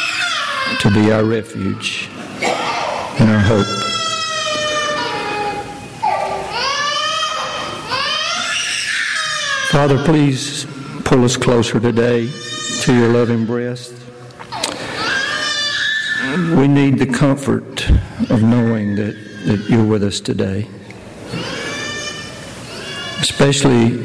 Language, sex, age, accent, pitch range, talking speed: English, male, 60-79, American, 110-125 Hz, 75 wpm